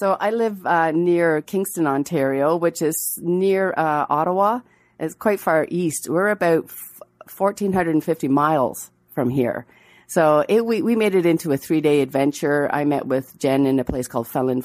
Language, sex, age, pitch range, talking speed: English, female, 40-59, 130-160 Hz, 170 wpm